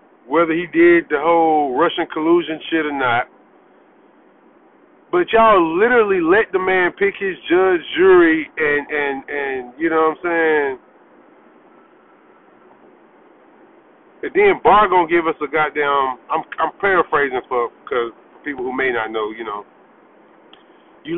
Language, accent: English, American